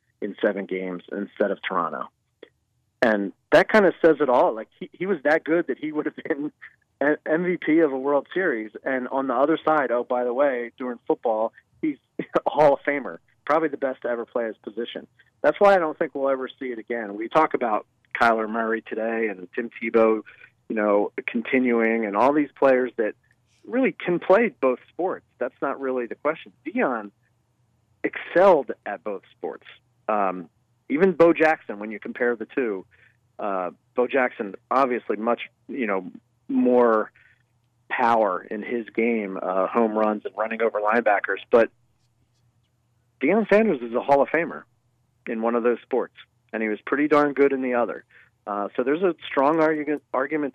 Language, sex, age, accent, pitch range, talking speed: English, male, 40-59, American, 115-150 Hz, 180 wpm